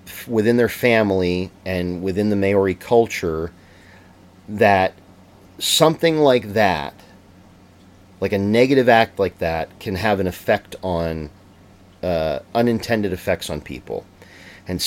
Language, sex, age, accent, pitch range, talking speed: English, male, 40-59, American, 90-105 Hz, 115 wpm